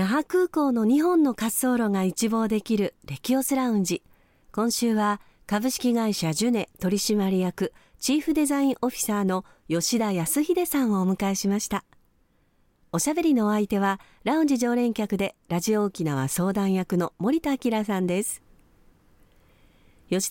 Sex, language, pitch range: female, Japanese, 180-260 Hz